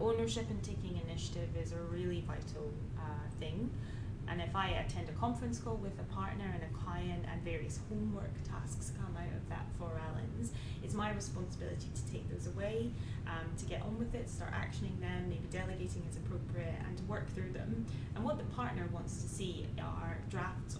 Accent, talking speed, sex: British, 195 wpm, female